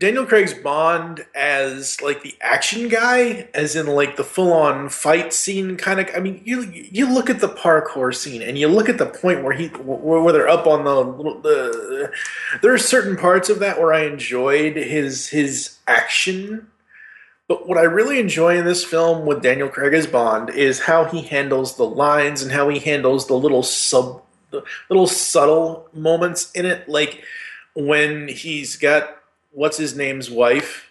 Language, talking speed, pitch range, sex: English, 180 wpm, 130-180 Hz, male